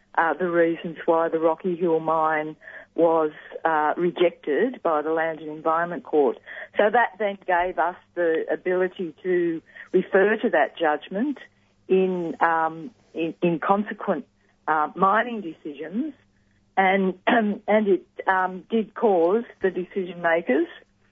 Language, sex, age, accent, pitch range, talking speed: English, female, 50-69, Australian, 150-185 Hz, 130 wpm